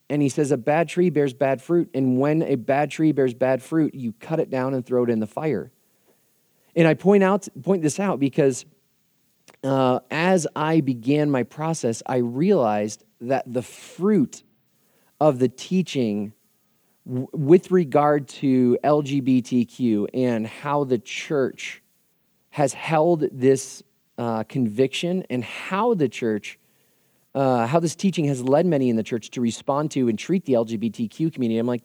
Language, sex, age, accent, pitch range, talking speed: English, male, 30-49, American, 125-155 Hz, 165 wpm